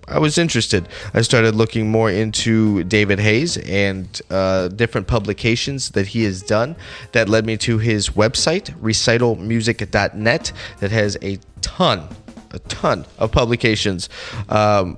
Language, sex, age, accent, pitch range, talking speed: English, male, 20-39, American, 105-125 Hz, 135 wpm